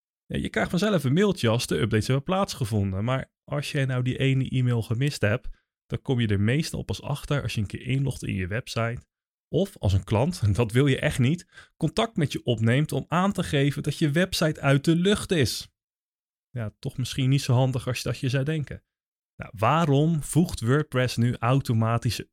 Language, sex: Dutch, male